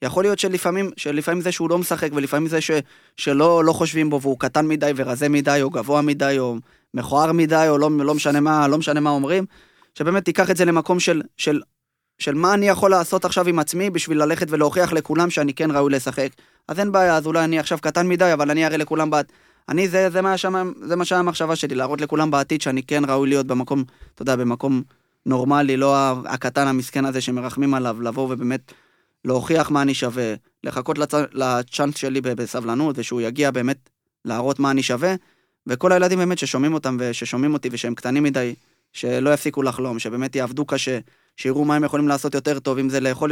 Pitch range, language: 130-155 Hz, Hebrew